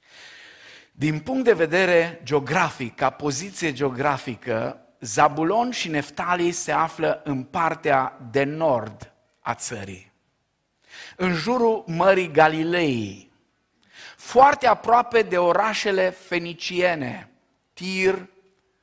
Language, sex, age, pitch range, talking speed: Romanian, male, 50-69, 130-185 Hz, 90 wpm